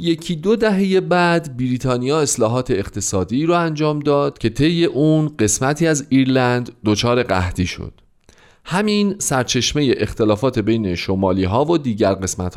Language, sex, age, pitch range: Persian, male, 40-59, 100-150 Hz